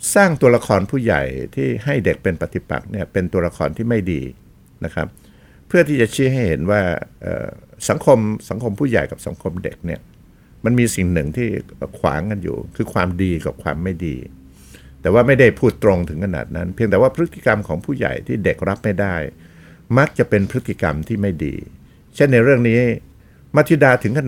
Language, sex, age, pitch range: Thai, male, 60-79, 85-120 Hz